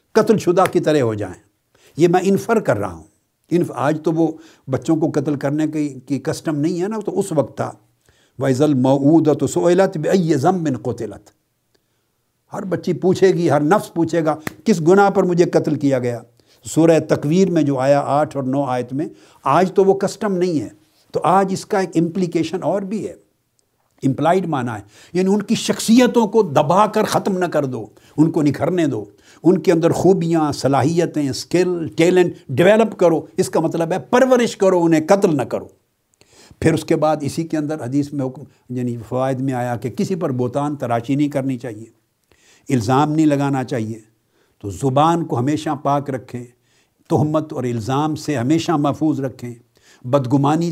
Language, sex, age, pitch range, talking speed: Urdu, male, 60-79, 135-175 Hz, 180 wpm